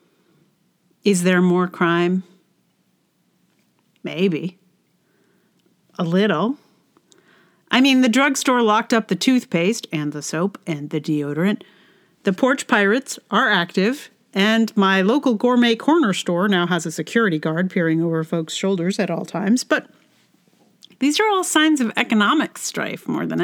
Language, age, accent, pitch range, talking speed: English, 40-59, American, 175-235 Hz, 140 wpm